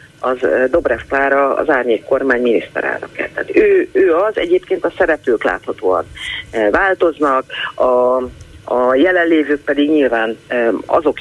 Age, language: 40-59, Hungarian